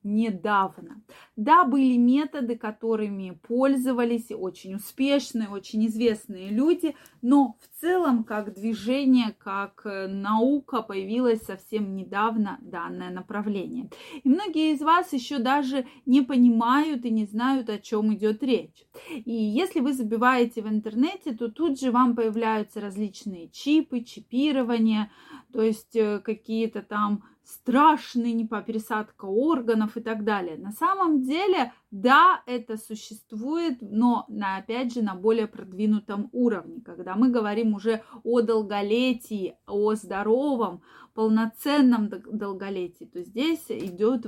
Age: 20-39